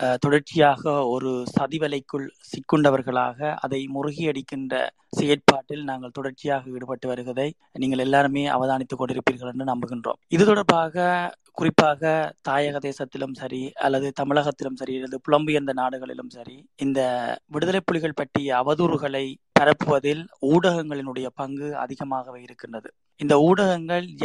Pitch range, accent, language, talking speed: 135-160 Hz, native, Tamil, 50 wpm